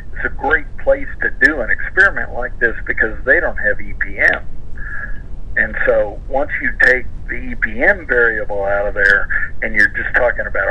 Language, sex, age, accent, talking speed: English, male, 50-69, American, 170 wpm